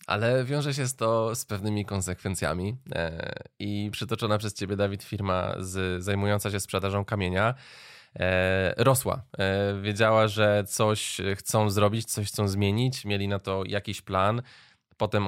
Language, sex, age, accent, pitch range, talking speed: Polish, male, 20-39, native, 100-125 Hz, 125 wpm